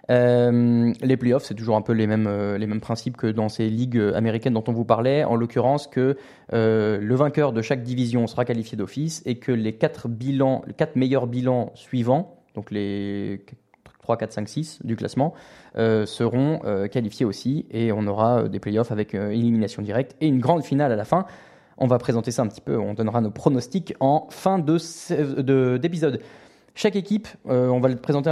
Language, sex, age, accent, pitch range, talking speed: French, male, 20-39, French, 115-145 Hz, 205 wpm